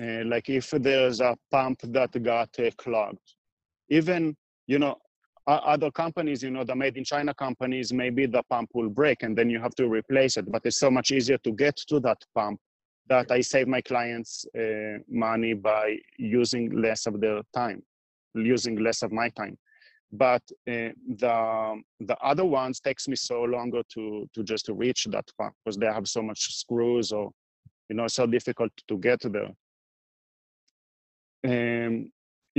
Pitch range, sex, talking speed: 115-145 Hz, male, 175 wpm